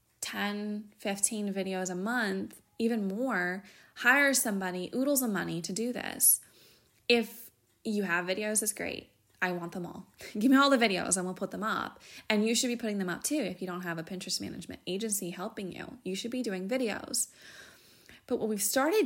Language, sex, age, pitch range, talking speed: English, female, 20-39, 185-225 Hz, 195 wpm